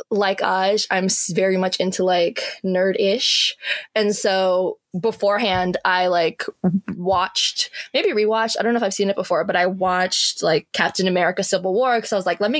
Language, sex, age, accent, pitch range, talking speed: English, female, 20-39, American, 185-220 Hz, 180 wpm